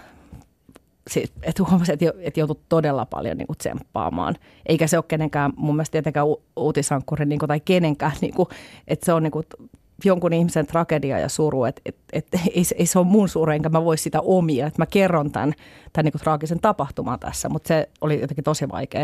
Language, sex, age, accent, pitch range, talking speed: Finnish, female, 30-49, native, 145-165 Hz, 210 wpm